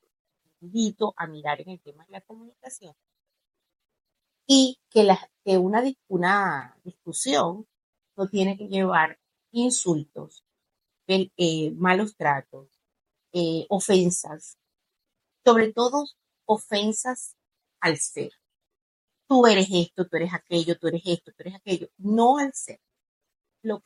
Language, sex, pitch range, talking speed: Spanish, female, 165-205 Hz, 120 wpm